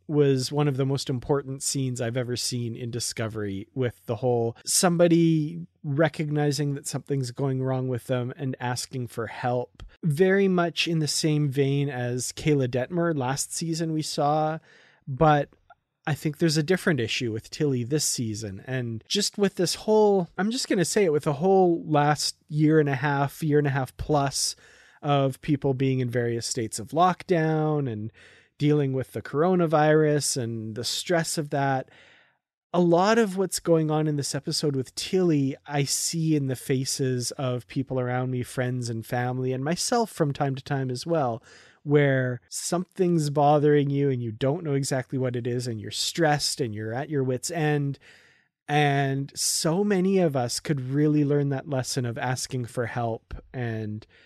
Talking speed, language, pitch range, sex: 175 wpm, English, 125-155 Hz, male